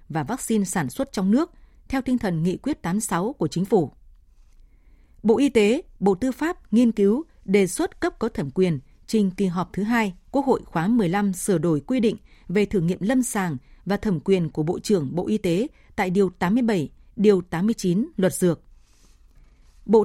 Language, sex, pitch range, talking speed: Vietnamese, female, 190-245 Hz, 190 wpm